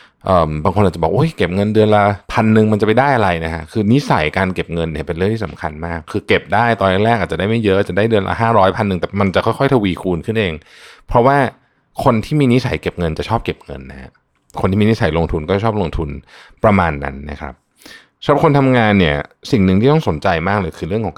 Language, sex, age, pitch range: Thai, male, 20-39, 85-115 Hz